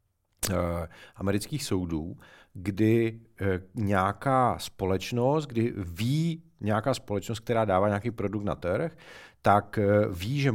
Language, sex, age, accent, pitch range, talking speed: Czech, male, 40-59, native, 100-125 Hz, 100 wpm